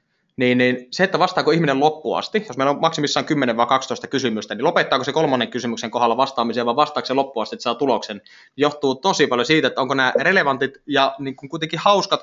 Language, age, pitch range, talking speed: Finnish, 20-39, 120-165 Hz, 200 wpm